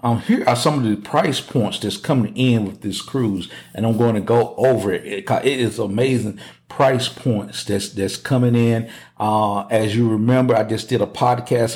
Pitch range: 100-120 Hz